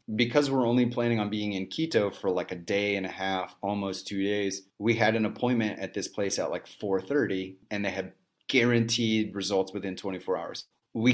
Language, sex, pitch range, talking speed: English, male, 95-115 Hz, 200 wpm